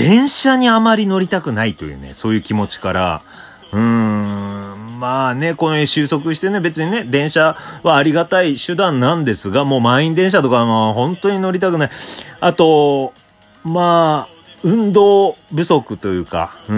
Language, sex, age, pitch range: Japanese, male, 30-49, 110-165 Hz